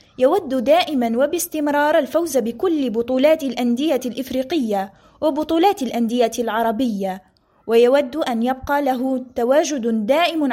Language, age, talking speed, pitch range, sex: Arabic, 20-39, 95 wpm, 225-275 Hz, female